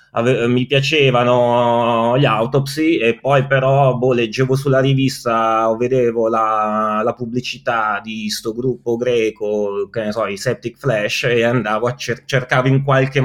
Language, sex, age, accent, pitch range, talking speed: Italian, male, 20-39, native, 110-135 Hz, 150 wpm